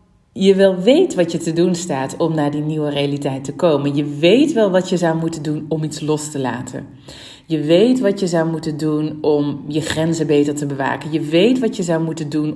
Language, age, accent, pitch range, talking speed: Dutch, 40-59, Dutch, 155-205 Hz, 230 wpm